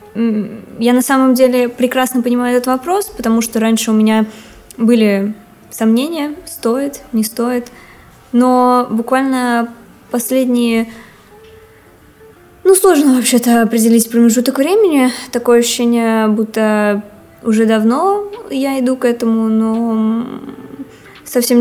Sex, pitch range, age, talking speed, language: female, 225-255 Hz, 20-39, 105 wpm, Russian